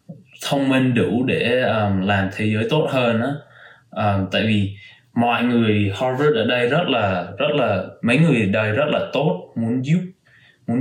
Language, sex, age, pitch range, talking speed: Vietnamese, male, 20-39, 100-125 Hz, 180 wpm